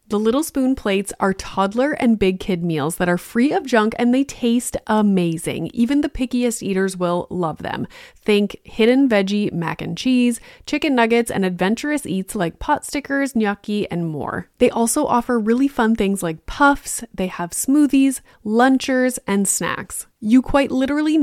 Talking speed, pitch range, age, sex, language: 170 wpm, 185-245 Hz, 20-39, female, English